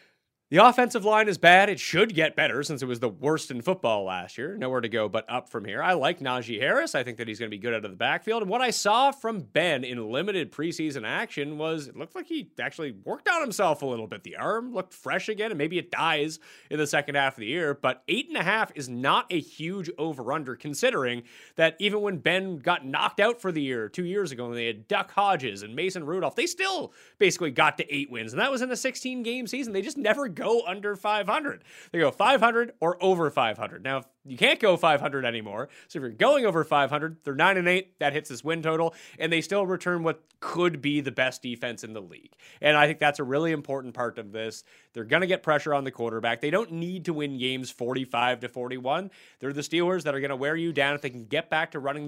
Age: 30-49